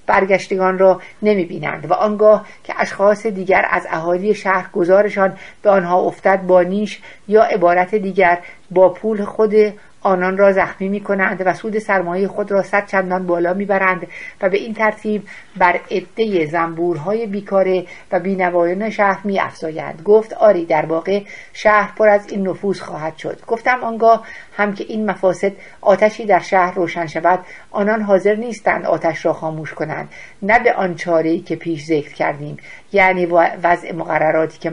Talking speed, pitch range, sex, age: 155 wpm, 175-210 Hz, female, 50-69